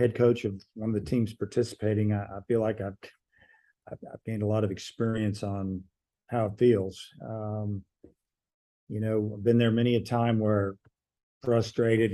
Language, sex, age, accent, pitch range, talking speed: English, male, 50-69, American, 100-115 Hz, 170 wpm